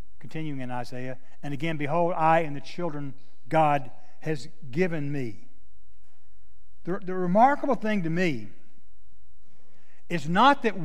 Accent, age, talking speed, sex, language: American, 60-79, 125 wpm, male, English